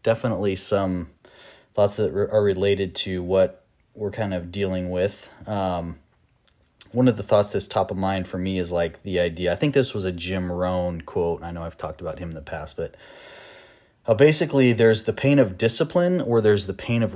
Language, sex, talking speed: English, male, 205 wpm